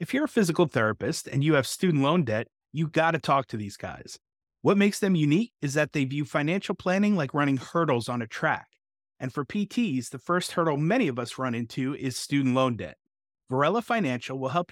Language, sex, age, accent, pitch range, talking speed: English, male, 30-49, American, 130-175 Hz, 215 wpm